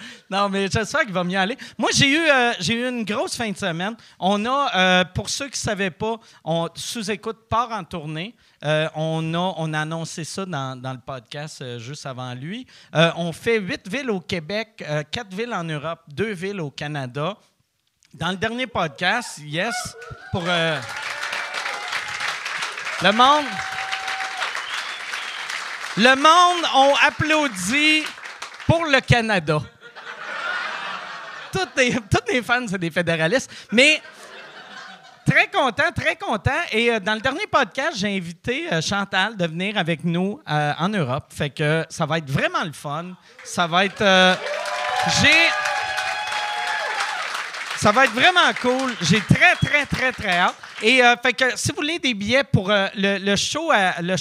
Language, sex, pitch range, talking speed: French, male, 165-240 Hz, 170 wpm